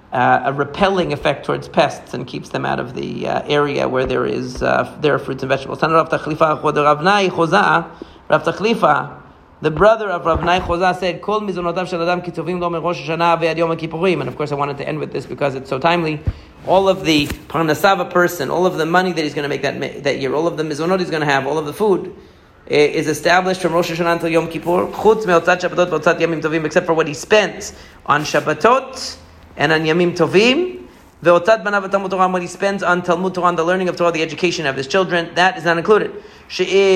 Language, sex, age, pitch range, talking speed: English, male, 40-59, 150-185 Hz, 170 wpm